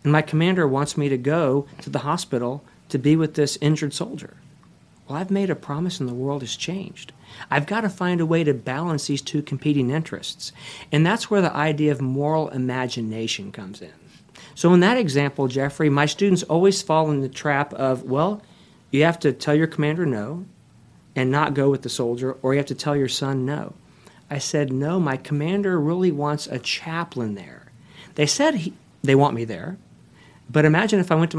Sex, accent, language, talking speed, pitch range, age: male, American, English, 200 wpm, 135-160 Hz, 50-69